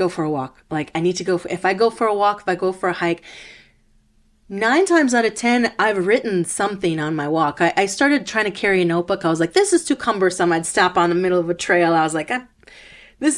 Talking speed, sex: 270 wpm, female